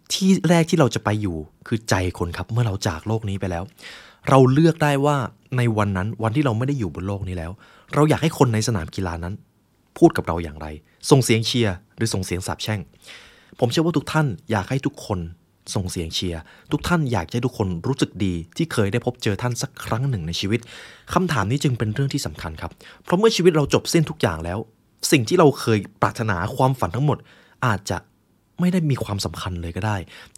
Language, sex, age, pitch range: Thai, male, 20-39, 95-135 Hz